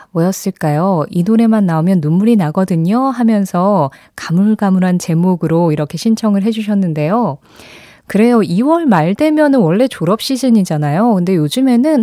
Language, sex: Korean, female